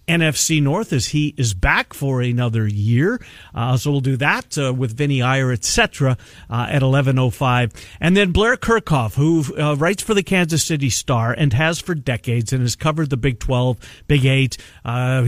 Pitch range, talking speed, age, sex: 120-155 Hz, 190 wpm, 50-69, male